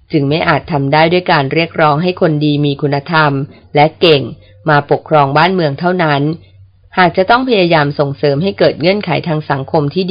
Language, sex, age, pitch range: Thai, female, 30-49, 140-170 Hz